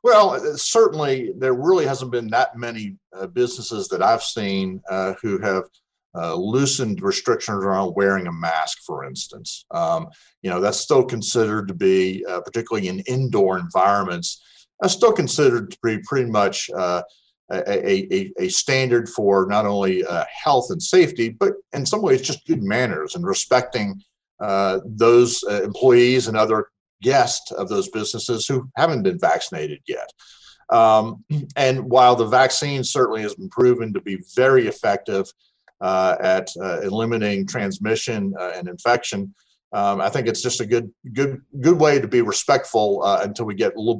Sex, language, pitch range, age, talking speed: male, English, 100-155 Hz, 50-69, 165 wpm